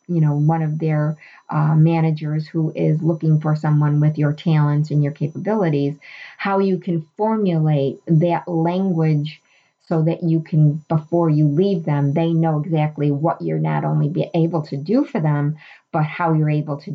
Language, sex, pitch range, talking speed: English, female, 145-170 Hz, 175 wpm